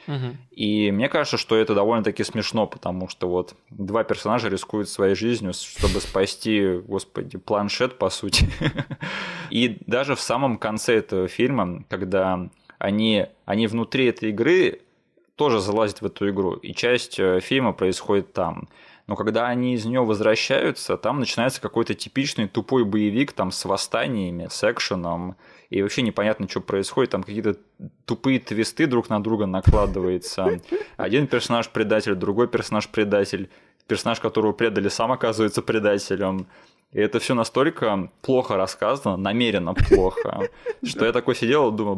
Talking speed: 140 wpm